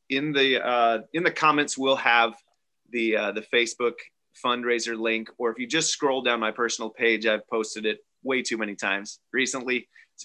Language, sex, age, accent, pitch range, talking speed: English, male, 30-49, American, 115-135 Hz, 185 wpm